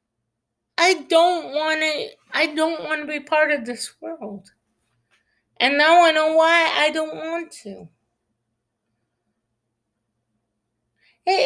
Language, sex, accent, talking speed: English, female, American, 110 wpm